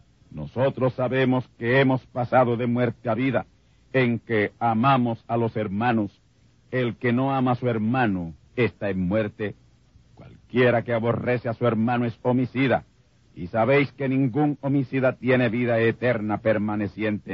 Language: Spanish